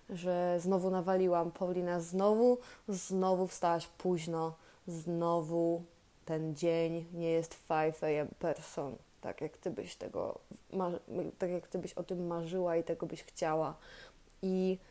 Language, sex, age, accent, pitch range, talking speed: Polish, female, 20-39, native, 175-205 Hz, 135 wpm